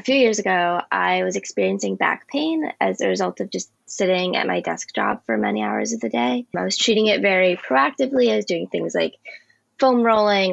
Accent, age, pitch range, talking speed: American, 10-29, 175-220 Hz, 215 wpm